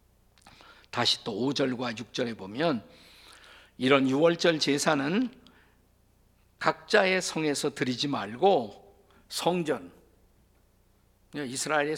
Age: 50-69